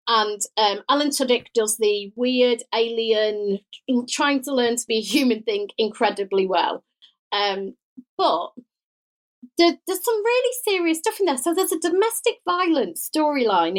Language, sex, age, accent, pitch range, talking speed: English, female, 30-49, British, 215-310 Hz, 150 wpm